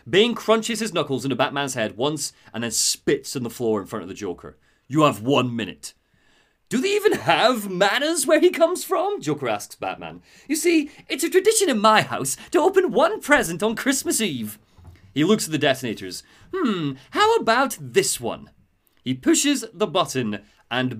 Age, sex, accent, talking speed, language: 30-49, male, British, 185 wpm, English